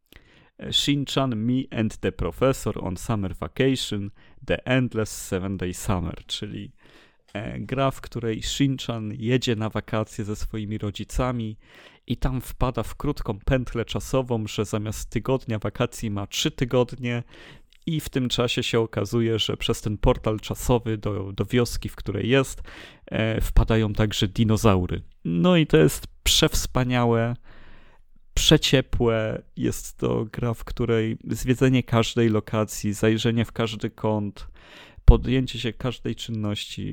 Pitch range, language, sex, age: 105-120 Hz, Polish, male, 30-49